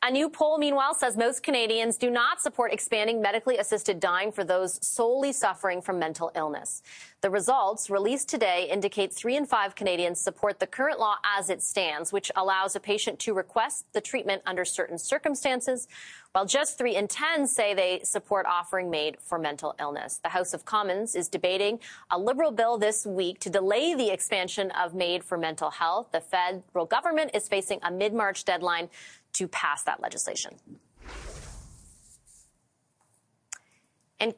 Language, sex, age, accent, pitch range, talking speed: English, female, 30-49, American, 185-235 Hz, 165 wpm